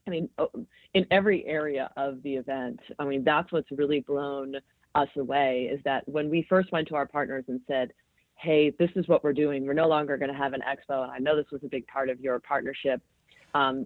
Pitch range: 140-165 Hz